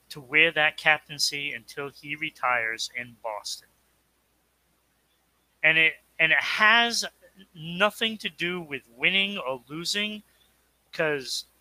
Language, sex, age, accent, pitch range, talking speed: English, male, 30-49, American, 145-185 Hz, 115 wpm